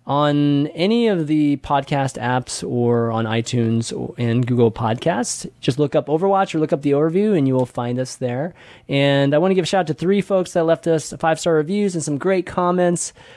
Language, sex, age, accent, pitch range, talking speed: English, male, 20-39, American, 125-170 Hz, 215 wpm